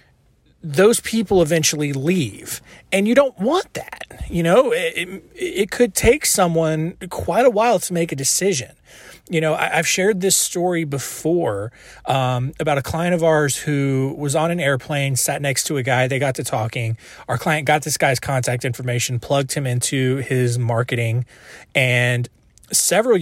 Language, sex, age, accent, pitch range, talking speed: English, male, 30-49, American, 130-165 Hz, 170 wpm